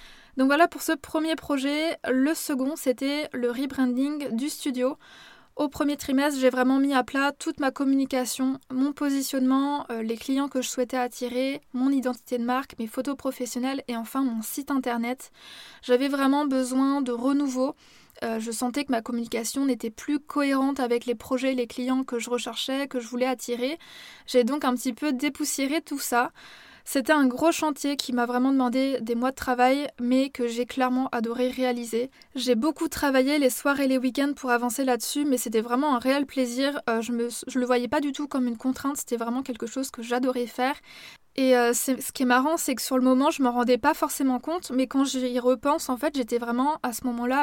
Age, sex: 20-39, female